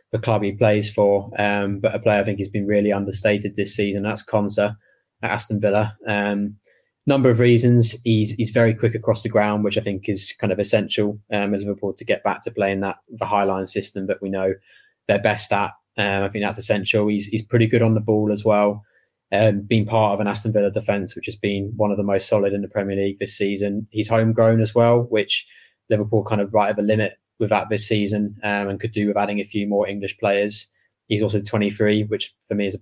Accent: British